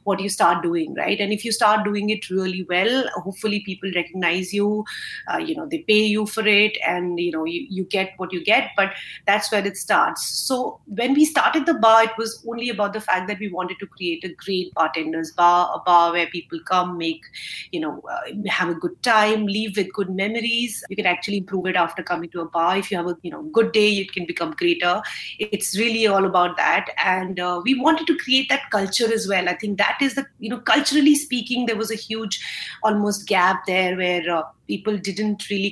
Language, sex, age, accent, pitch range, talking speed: English, female, 30-49, Indian, 180-215 Hz, 225 wpm